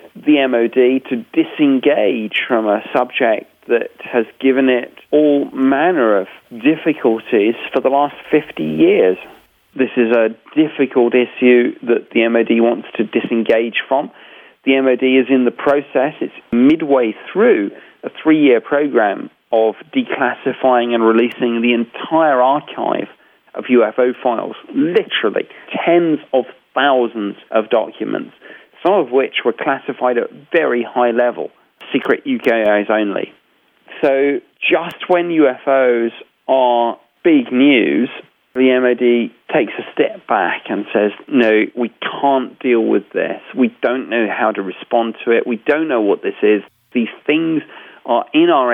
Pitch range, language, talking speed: 120-170 Hz, English, 140 wpm